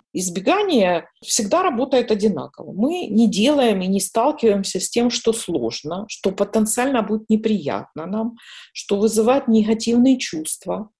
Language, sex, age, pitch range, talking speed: English, female, 40-59, 205-265 Hz, 125 wpm